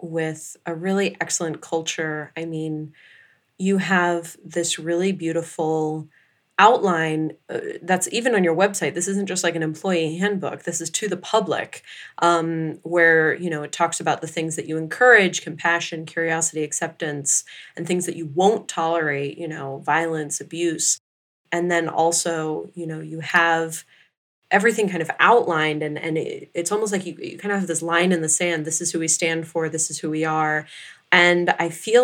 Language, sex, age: English, female, 20-39